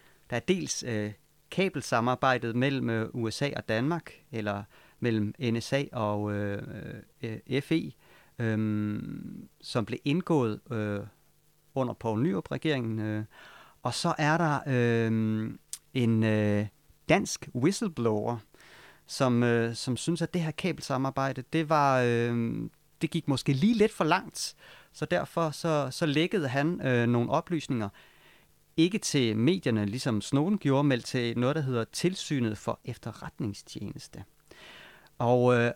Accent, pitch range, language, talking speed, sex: native, 115-150 Hz, Danish, 130 wpm, male